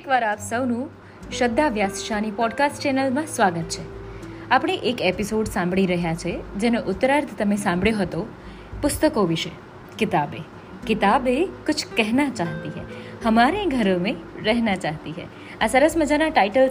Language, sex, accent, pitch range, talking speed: Gujarati, female, native, 190-285 Hz, 140 wpm